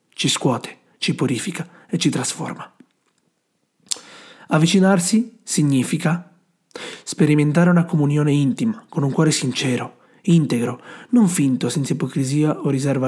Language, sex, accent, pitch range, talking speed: Italian, male, native, 130-165 Hz, 110 wpm